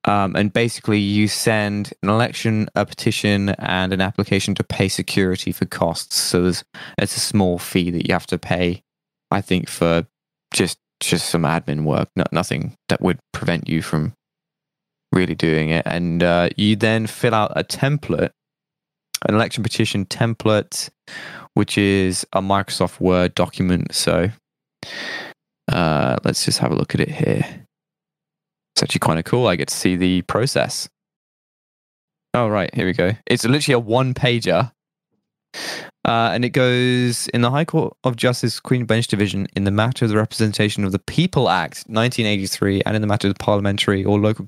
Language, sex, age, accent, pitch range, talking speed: English, male, 20-39, British, 95-115 Hz, 170 wpm